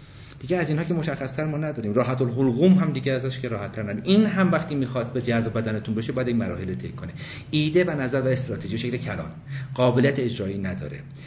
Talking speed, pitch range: 210 wpm, 115-150 Hz